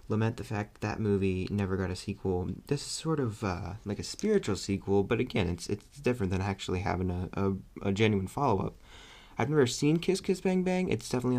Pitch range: 95-120 Hz